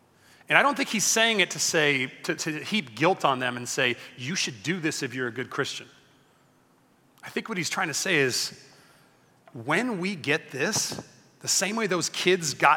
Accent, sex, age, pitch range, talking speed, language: American, male, 30-49, 140-190 Hz, 205 wpm, English